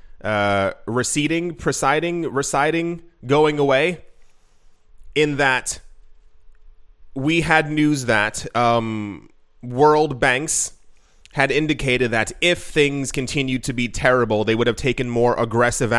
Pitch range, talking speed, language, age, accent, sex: 115-135 Hz, 115 wpm, English, 20-39, American, male